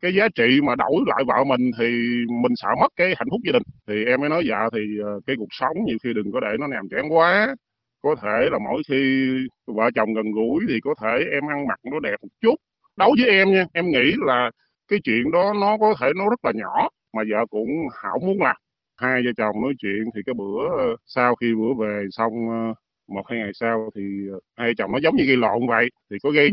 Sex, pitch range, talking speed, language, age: male, 115-170 Hz, 240 wpm, Vietnamese, 20-39